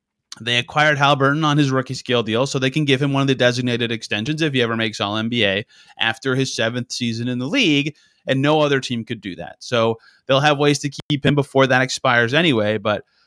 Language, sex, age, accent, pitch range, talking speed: English, male, 30-49, American, 120-155 Hz, 230 wpm